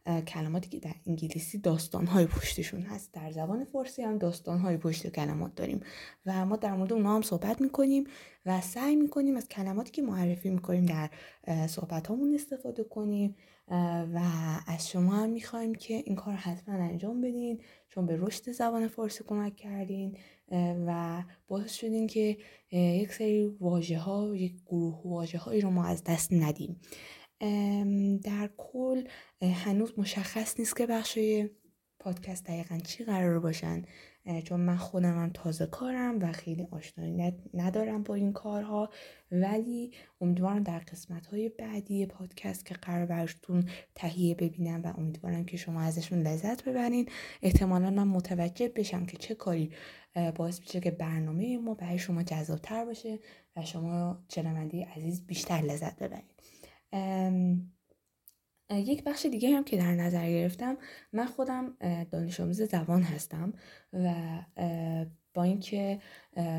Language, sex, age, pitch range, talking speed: Persian, female, 20-39, 170-210 Hz, 140 wpm